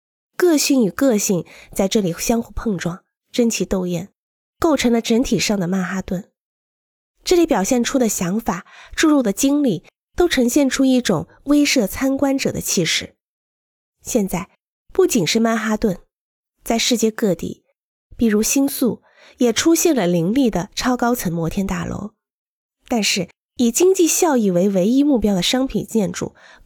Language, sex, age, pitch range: Chinese, female, 20-39, 190-265 Hz